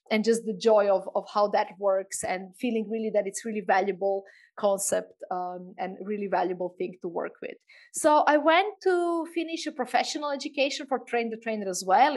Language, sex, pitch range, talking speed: English, female, 210-270 Hz, 190 wpm